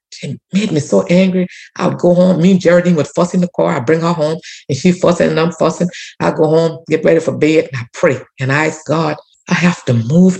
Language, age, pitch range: English, 60-79, 145-190 Hz